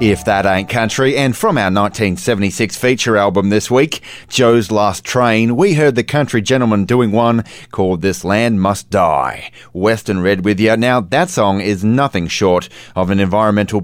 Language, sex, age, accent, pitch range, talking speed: English, male, 30-49, Australian, 95-120 Hz, 175 wpm